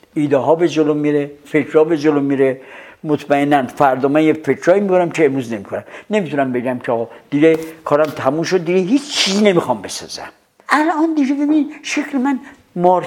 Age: 60-79